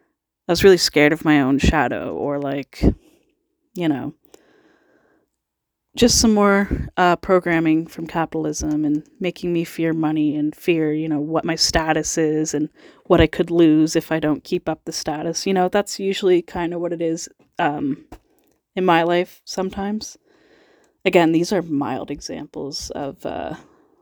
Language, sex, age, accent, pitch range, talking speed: English, female, 30-49, American, 155-195 Hz, 160 wpm